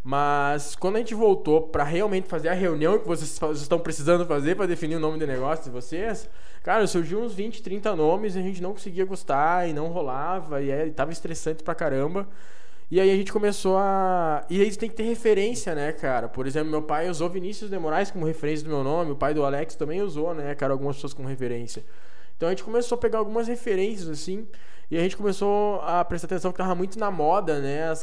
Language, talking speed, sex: Portuguese, 225 wpm, male